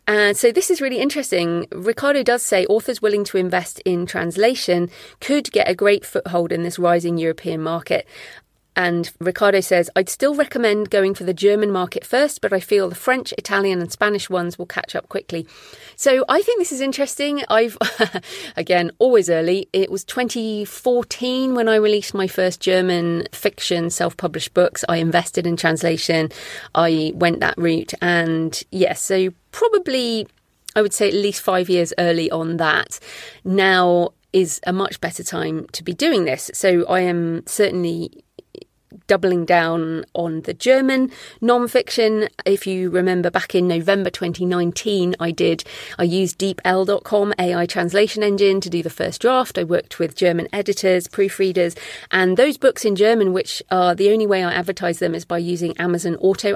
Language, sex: English, female